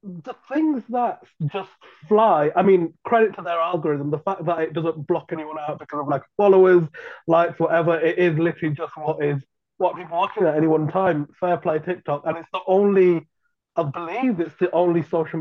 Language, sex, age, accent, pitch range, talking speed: English, male, 30-49, British, 160-195 Hz, 205 wpm